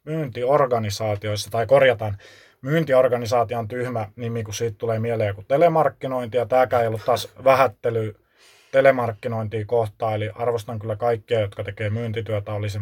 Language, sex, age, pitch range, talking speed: Finnish, male, 20-39, 110-130 Hz, 130 wpm